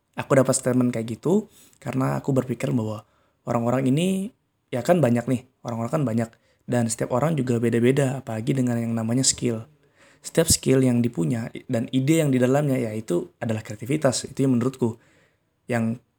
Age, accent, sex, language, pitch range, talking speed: 20-39, native, male, Indonesian, 115-130 Hz, 165 wpm